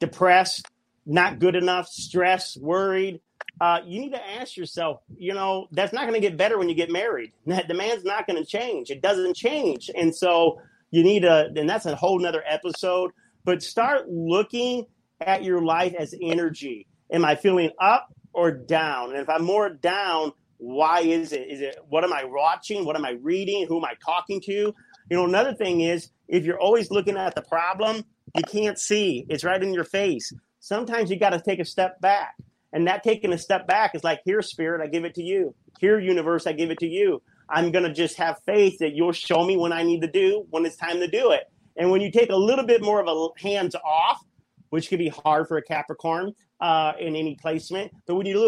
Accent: American